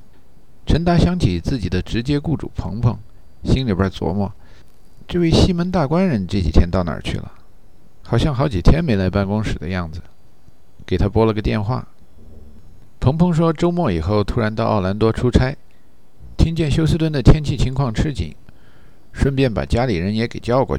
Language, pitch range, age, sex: Chinese, 95-120 Hz, 50-69, male